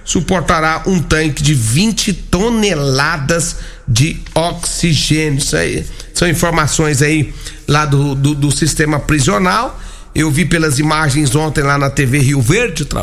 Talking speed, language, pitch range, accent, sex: 135 wpm, Portuguese, 150-205 Hz, Brazilian, male